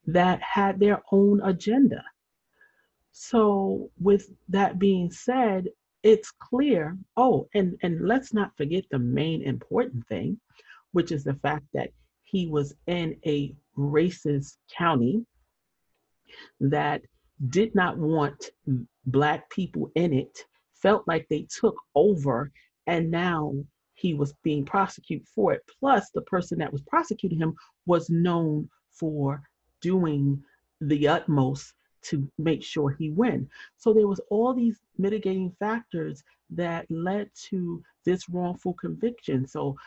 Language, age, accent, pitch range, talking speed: English, 40-59, American, 150-195 Hz, 130 wpm